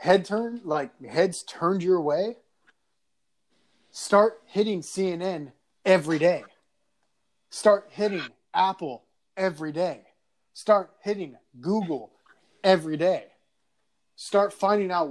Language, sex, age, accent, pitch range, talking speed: English, male, 20-39, American, 145-180 Hz, 100 wpm